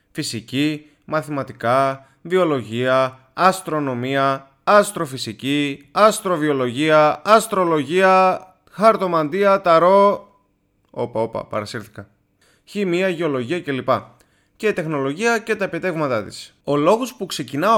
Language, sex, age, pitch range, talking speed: Greek, male, 20-39, 130-205 Hz, 85 wpm